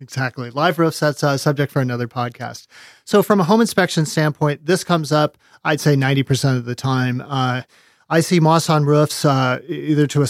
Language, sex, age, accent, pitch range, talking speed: English, male, 40-59, American, 130-155 Hz, 200 wpm